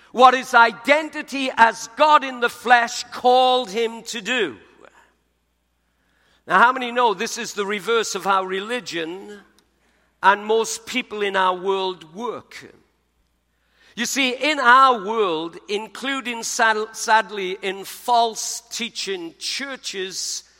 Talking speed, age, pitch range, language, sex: 120 wpm, 50-69, 200-250 Hz, English, male